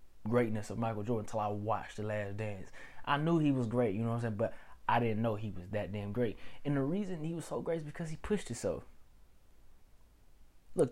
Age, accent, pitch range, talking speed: 20-39, American, 110-155 Hz, 235 wpm